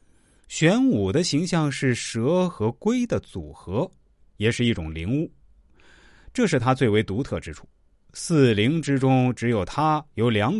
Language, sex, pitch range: Chinese, male, 95-140 Hz